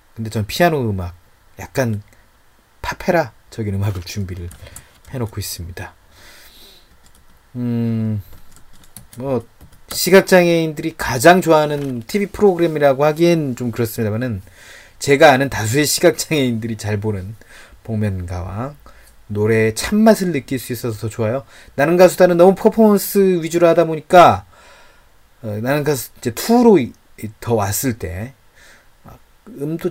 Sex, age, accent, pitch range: male, 30-49, native, 100-145 Hz